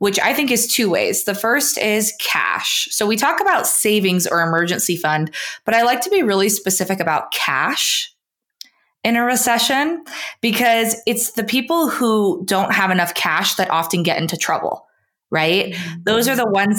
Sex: female